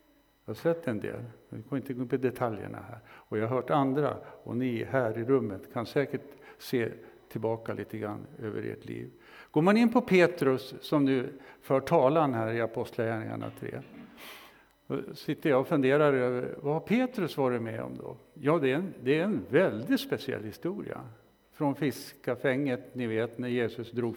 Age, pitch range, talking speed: 60-79, 115-140 Hz, 180 wpm